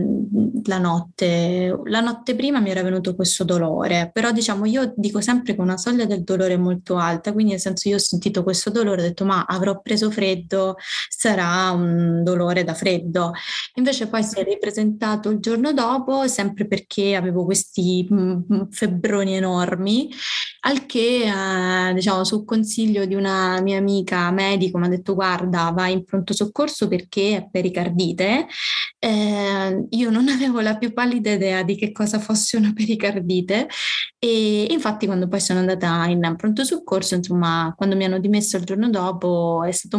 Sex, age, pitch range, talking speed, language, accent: female, 20-39, 185-215 Hz, 170 wpm, Italian, native